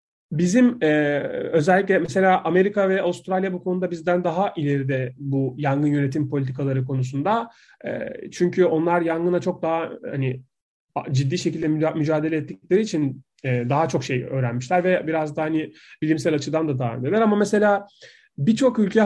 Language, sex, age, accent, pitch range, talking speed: Turkish, male, 30-49, native, 150-215 Hz, 150 wpm